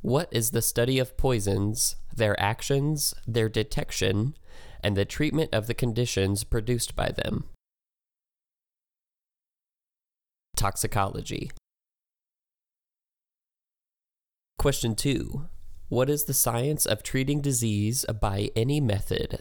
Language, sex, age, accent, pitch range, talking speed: English, male, 20-39, American, 100-120 Hz, 100 wpm